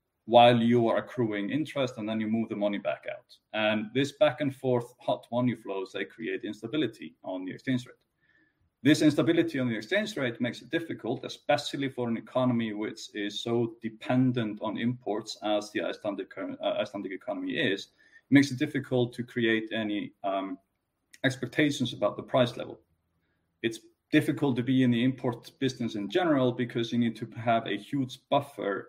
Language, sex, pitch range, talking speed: English, male, 110-135 Hz, 175 wpm